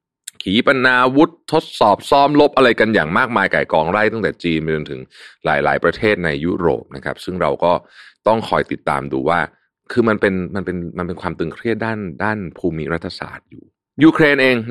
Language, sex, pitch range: Thai, male, 80-110 Hz